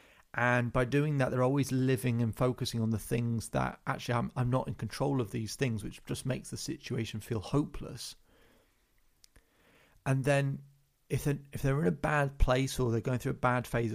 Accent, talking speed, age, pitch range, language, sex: British, 195 wpm, 30-49, 115-140 Hz, English, male